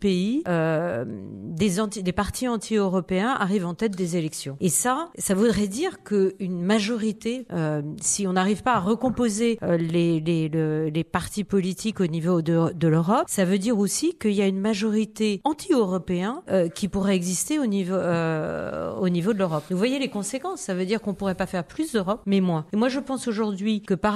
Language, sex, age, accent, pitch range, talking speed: French, female, 40-59, French, 185-240 Hz, 205 wpm